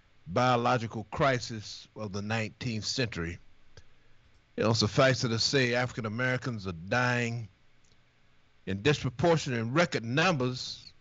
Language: English